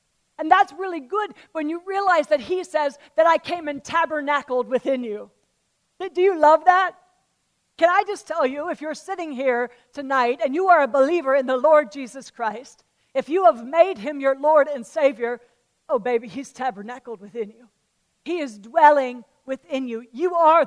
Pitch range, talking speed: 250-315 Hz, 185 wpm